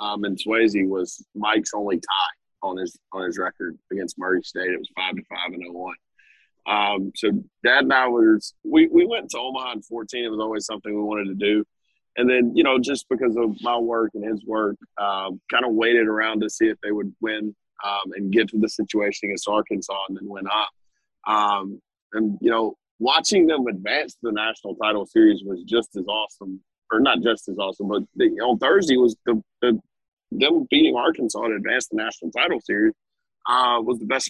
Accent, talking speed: American, 210 wpm